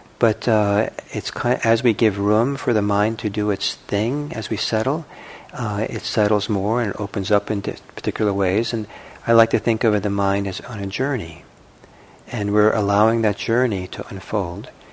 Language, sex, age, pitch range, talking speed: English, male, 50-69, 95-110 Hz, 205 wpm